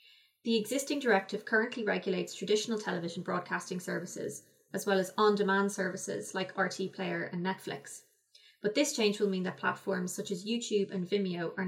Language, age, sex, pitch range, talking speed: English, 20-39, female, 190-225 Hz, 165 wpm